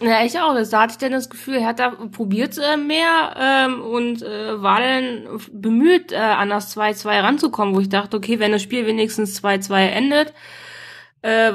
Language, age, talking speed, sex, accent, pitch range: German, 20-39, 185 wpm, female, German, 215-265 Hz